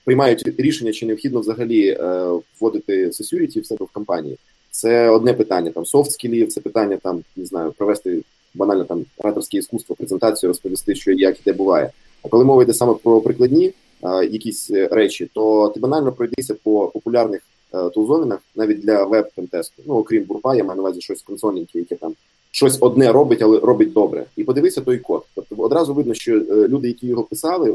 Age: 20-39